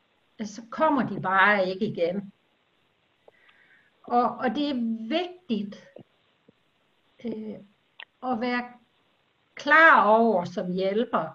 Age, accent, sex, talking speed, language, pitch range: 60-79, native, female, 95 wpm, Danish, 205-255 Hz